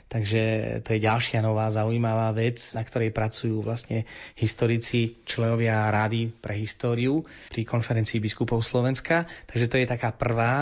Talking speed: 140 wpm